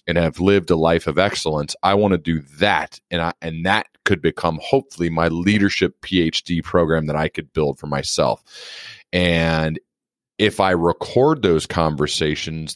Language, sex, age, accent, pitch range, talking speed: English, male, 30-49, American, 80-95 Hz, 165 wpm